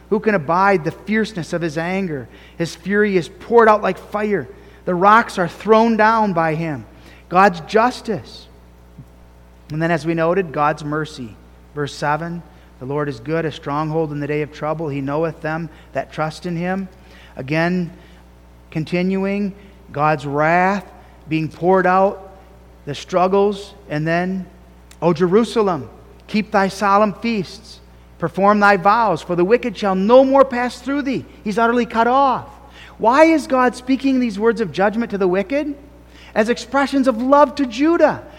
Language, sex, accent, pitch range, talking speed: English, male, American, 150-225 Hz, 160 wpm